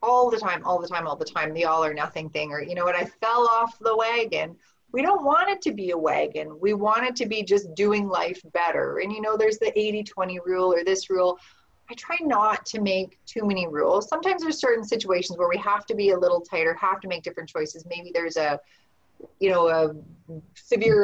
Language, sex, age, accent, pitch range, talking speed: English, female, 30-49, American, 175-235 Hz, 235 wpm